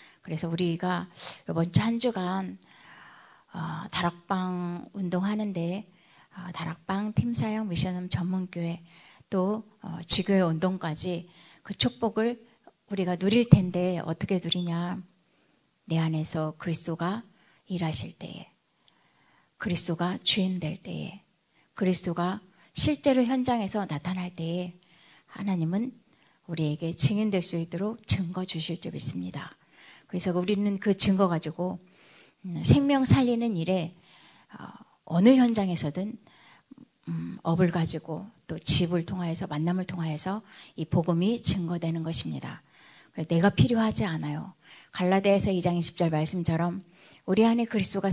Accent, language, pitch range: native, Korean, 170-200 Hz